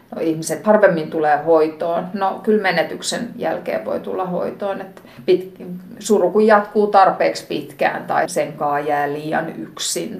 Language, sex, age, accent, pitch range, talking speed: Finnish, female, 50-69, native, 160-205 Hz, 140 wpm